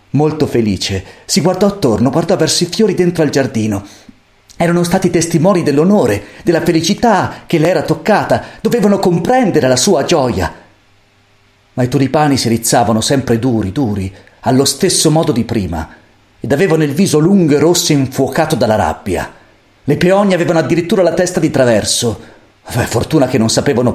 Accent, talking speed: native, 160 wpm